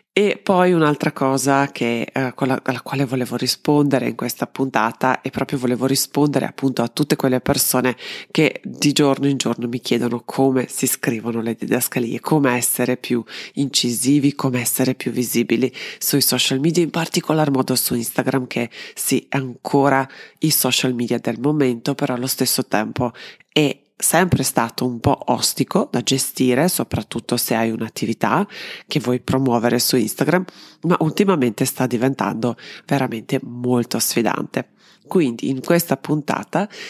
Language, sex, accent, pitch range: Italian, female, native, 125-145 Hz